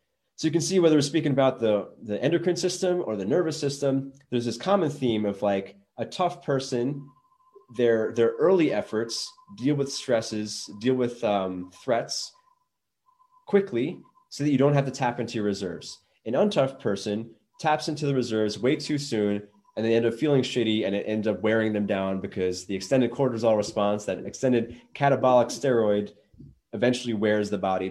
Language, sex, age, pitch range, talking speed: English, male, 20-39, 100-145 Hz, 180 wpm